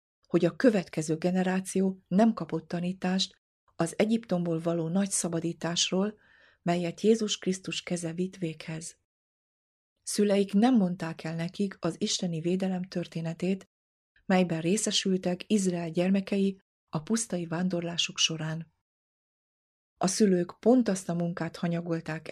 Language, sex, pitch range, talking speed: Hungarian, female, 165-195 Hz, 115 wpm